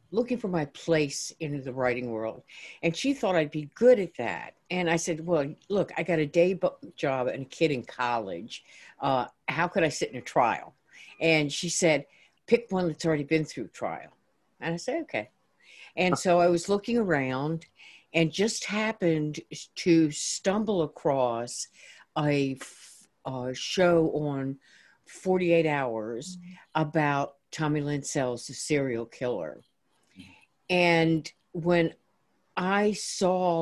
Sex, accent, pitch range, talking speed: female, American, 135-170 Hz, 145 wpm